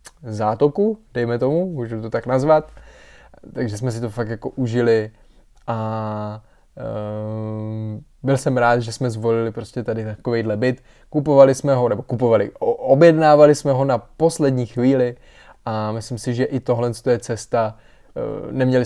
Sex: male